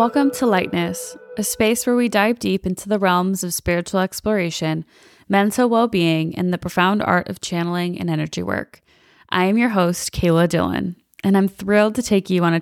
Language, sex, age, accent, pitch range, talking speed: English, female, 20-39, American, 165-210 Hz, 190 wpm